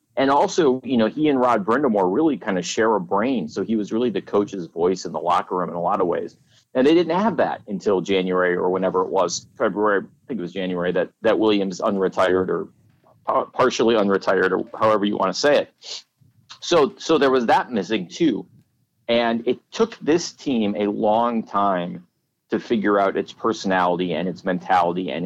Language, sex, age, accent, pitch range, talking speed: English, male, 40-59, American, 95-120 Hz, 200 wpm